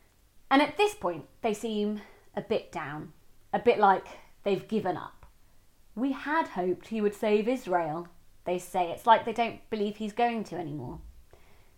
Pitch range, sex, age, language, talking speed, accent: 175-270 Hz, female, 30-49, English, 170 wpm, British